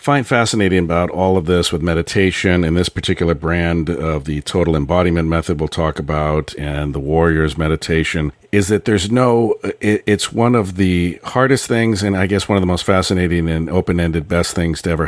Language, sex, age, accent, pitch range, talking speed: English, male, 50-69, American, 85-105 Hz, 195 wpm